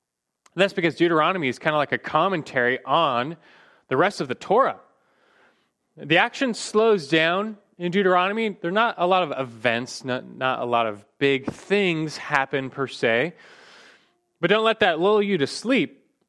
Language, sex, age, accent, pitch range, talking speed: English, male, 30-49, American, 130-185 Hz, 170 wpm